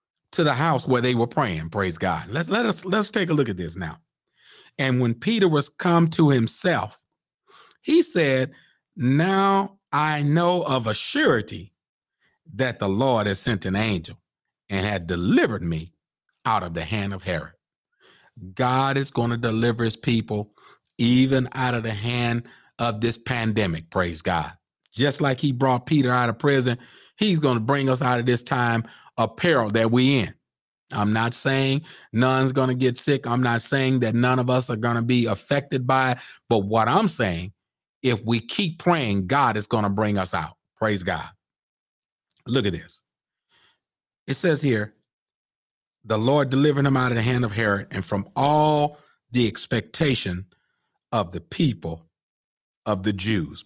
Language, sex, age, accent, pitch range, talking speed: English, male, 40-59, American, 105-135 Hz, 175 wpm